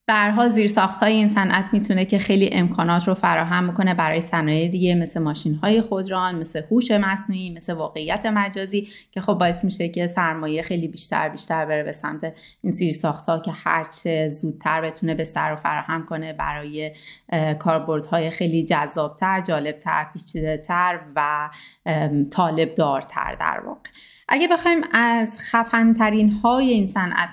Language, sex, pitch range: Persian, female, 160-195 Hz